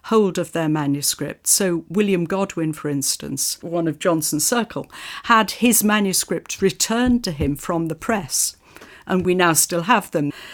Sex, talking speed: female, 160 wpm